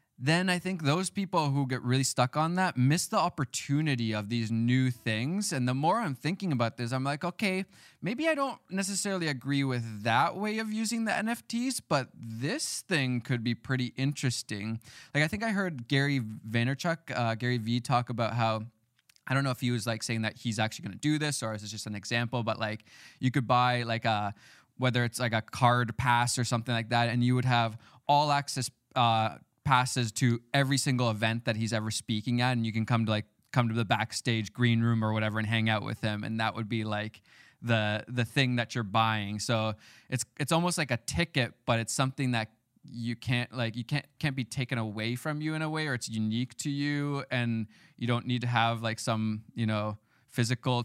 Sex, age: male, 20-39